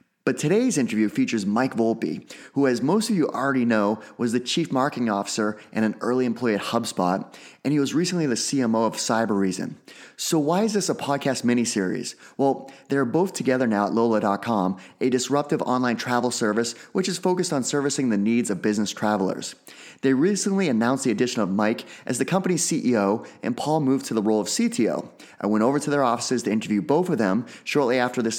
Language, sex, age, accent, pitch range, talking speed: English, male, 30-49, American, 110-140 Hz, 200 wpm